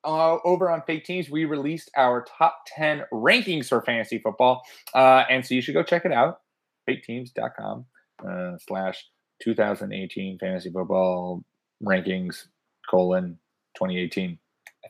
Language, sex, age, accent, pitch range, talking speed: English, male, 30-49, American, 105-170 Hz, 135 wpm